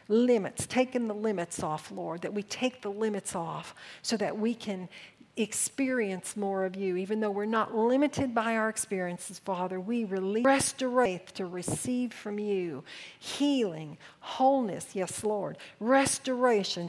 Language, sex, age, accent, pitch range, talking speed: English, female, 50-69, American, 205-255 Hz, 145 wpm